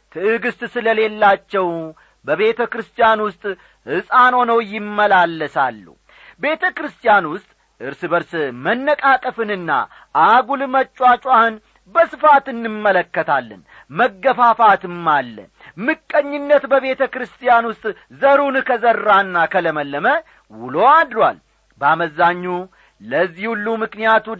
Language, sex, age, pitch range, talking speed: Amharic, male, 40-59, 175-235 Hz, 80 wpm